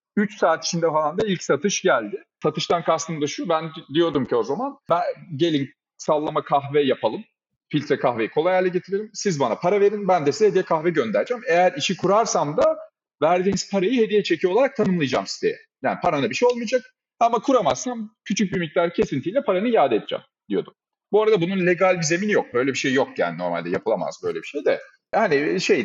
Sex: male